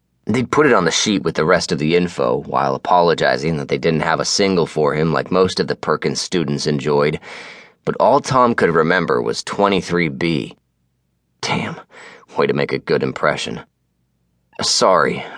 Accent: American